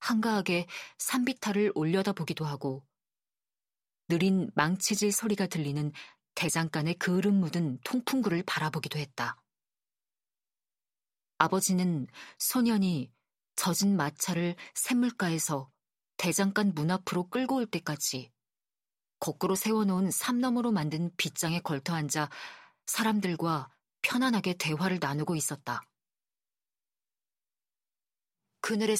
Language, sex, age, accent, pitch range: Korean, female, 40-59, native, 155-210 Hz